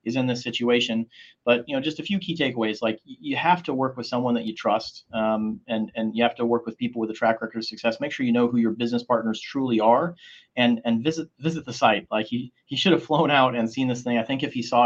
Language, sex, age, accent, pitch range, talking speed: English, male, 30-49, American, 115-130 Hz, 280 wpm